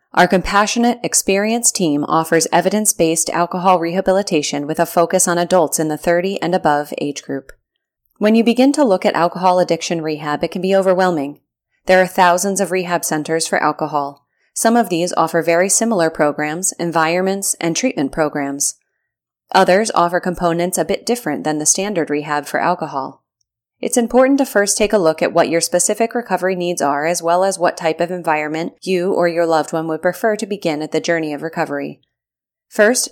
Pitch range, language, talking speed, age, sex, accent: 160-190 Hz, English, 180 wpm, 30-49, female, American